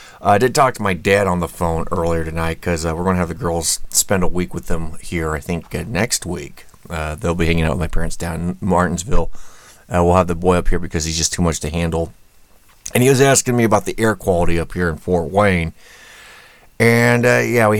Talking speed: 245 wpm